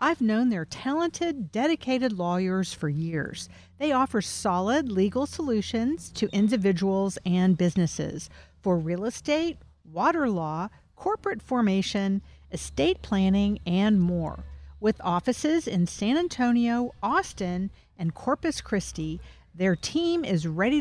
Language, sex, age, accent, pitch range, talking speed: English, female, 50-69, American, 175-275 Hz, 120 wpm